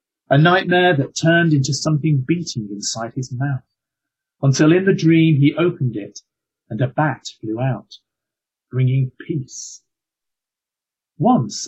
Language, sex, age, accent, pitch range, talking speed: English, male, 40-59, British, 120-150 Hz, 130 wpm